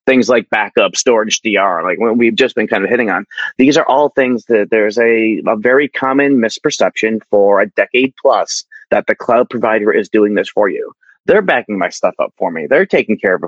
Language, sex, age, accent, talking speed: English, male, 30-49, American, 225 wpm